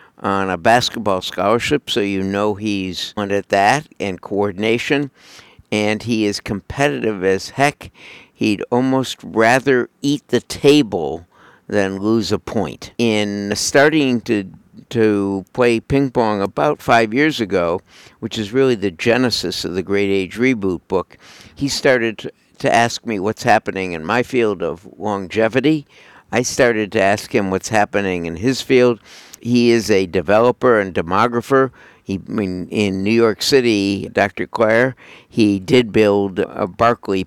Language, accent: English, American